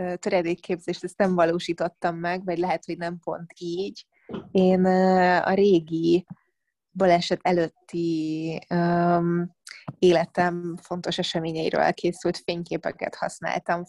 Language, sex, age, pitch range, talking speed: Hungarian, female, 20-39, 170-180 Hz, 95 wpm